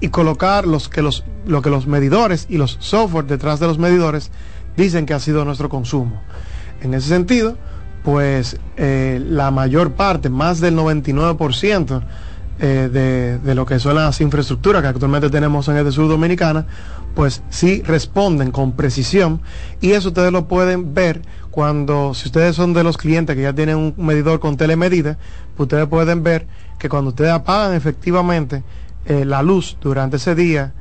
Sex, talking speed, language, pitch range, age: male, 175 wpm, Spanish, 145-175 Hz, 30-49